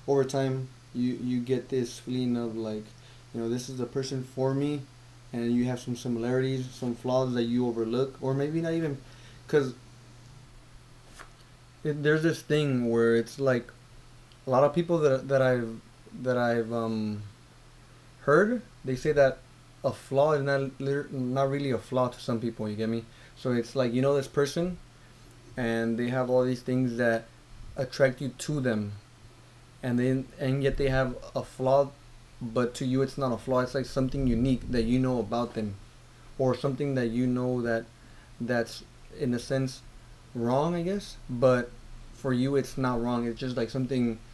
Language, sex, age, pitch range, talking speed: English, male, 20-39, 120-135 Hz, 180 wpm